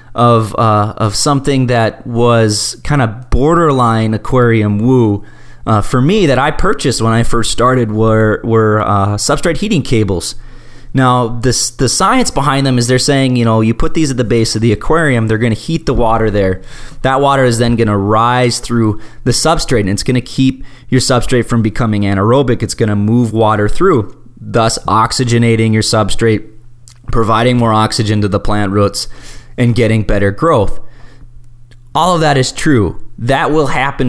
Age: 20-39